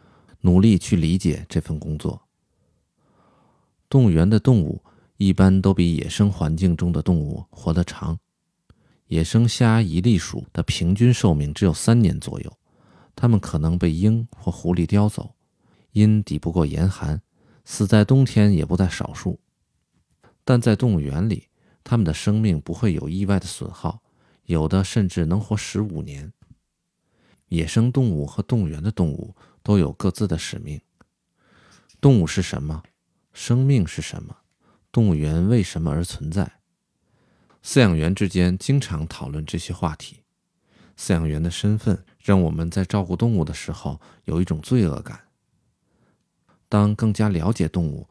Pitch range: 80-105 Hz